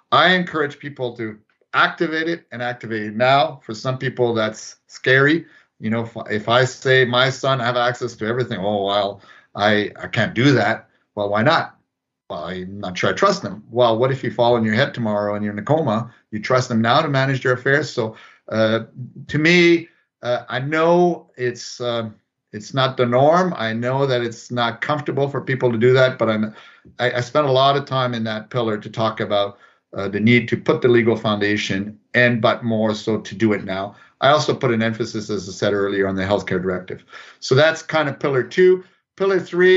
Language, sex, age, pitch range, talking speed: English, male, 50-69, 115-140 Hz, 215 wpm